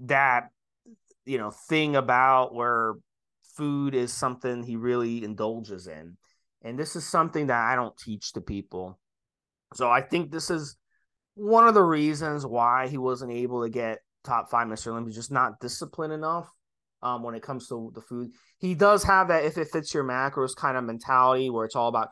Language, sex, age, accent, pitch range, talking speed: English, male, 30-49, American, 120-150 Hz, 185 wpm